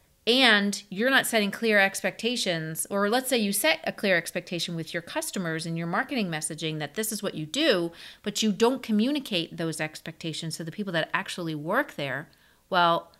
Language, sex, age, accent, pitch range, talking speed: English, female, 40-59, American, 160-205 Hz, 185 wpm